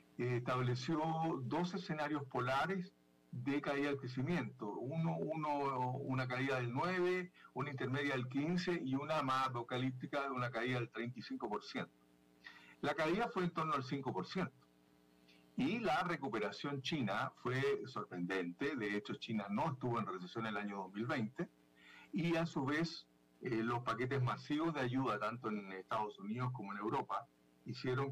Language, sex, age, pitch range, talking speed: Spanish, male, 50-69, 105-145 Hz, 145 wpm